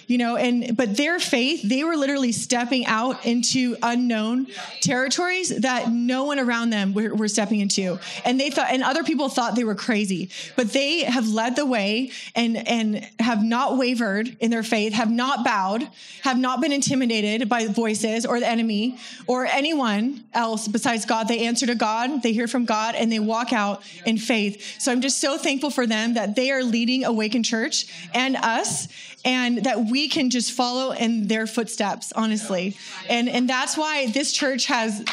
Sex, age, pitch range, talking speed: female, 20-39, 225-270 Hz, 190 wpm